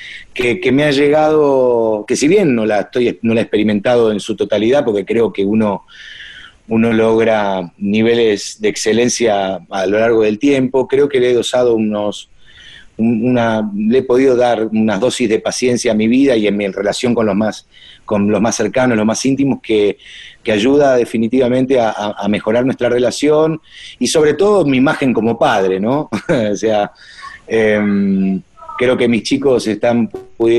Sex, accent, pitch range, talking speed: male, Argentinian, 105-130 Hz, 175 wpm